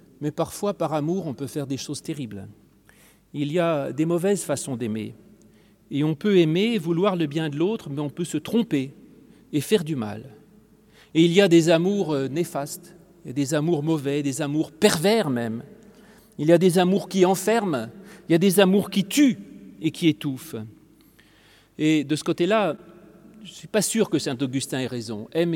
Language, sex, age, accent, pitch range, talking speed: French, male, 40-59, French, 135-170 Hz, 195 wpm